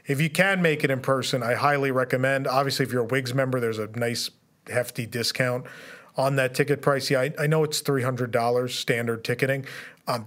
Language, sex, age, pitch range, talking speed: English, male, 40-59, 120-145 Hz, 200 wpm